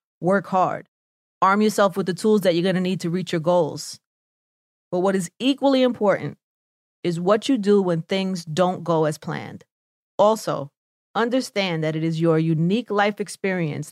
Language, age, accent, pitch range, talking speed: English, 30-49, American, 165-215 Hz, 175 wpm